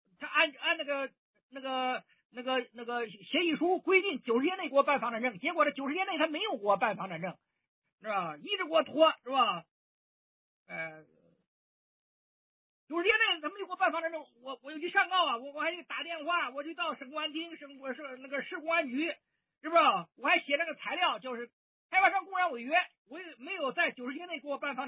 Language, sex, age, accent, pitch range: Chinese, male, 50-69, native, 245-330 Hz